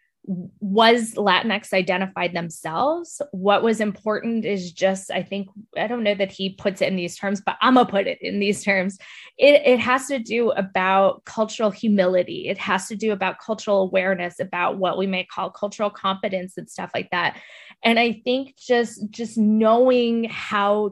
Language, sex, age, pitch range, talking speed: English, female, 20-39, 195-245 Hz, 180 wpm